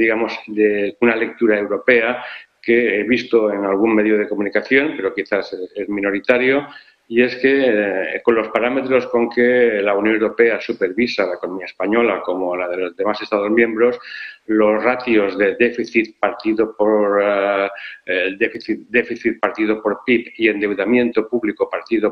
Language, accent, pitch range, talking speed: Spanish, Spanish, 100-120 Hz, 150 wpm